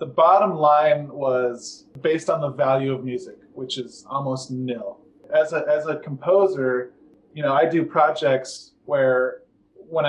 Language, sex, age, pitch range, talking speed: English, male, 20-39, 130-160 Hz, 155 wpm